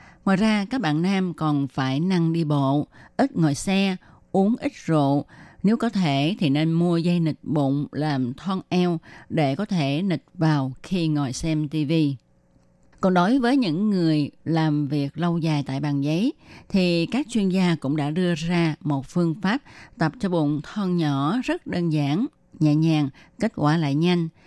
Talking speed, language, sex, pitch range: 180 wpm, Vietnamese, female, 145-190 Hz